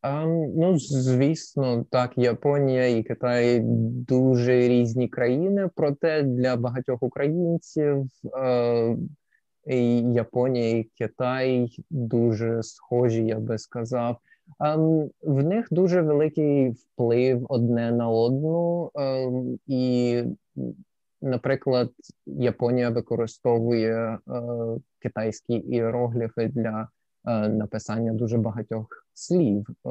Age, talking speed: 20-39, 95 wpm